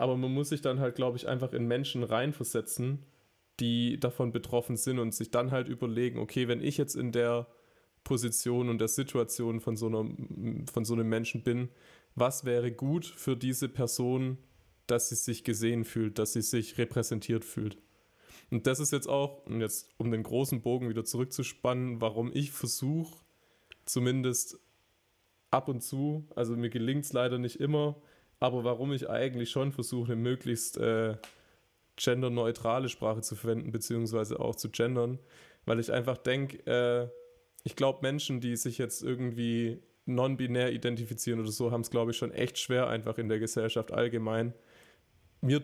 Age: 20-39